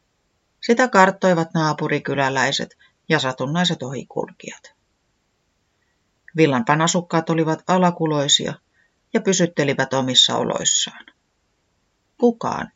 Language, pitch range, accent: Finnish, 130-190 Hz, native